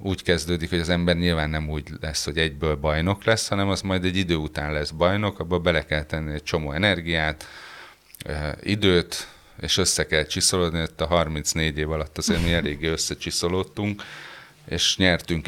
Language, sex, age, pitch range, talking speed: Hungarian, male, 30-49, 75-90 Hz, 165 wpm